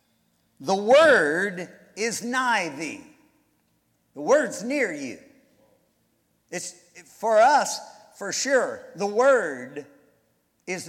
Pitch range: 200-270 Hz